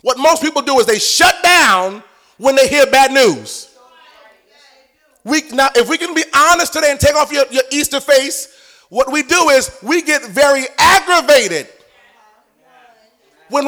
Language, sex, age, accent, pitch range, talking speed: English, male, 30-49, American, 275-355 Hz, 160 wpm